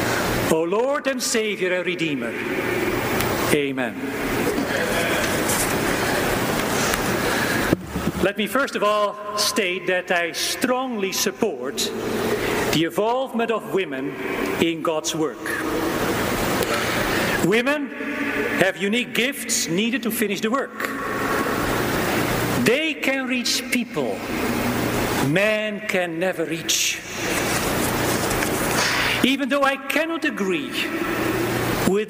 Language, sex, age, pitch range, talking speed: English, male, 50-69, 185-260 Hz, 90 wpm